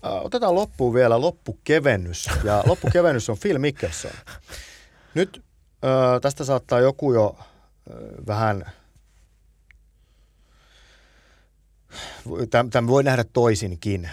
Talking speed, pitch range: 95 wpm, 95-115 Hz